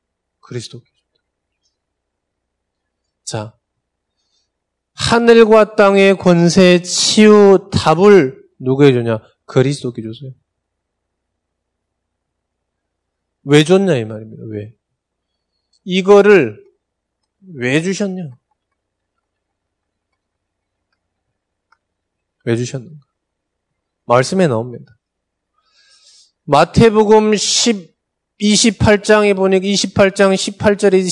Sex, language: male, Korean